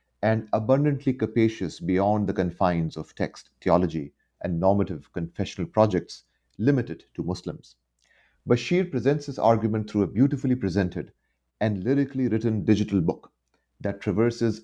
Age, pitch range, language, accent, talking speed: 30-49, 90-120 Hz, English, Indian, 125 wpm